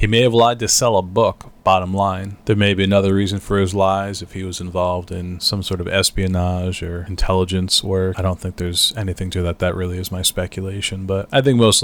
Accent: American